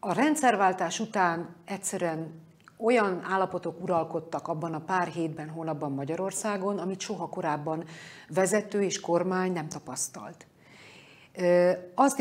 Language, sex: Hungarian, female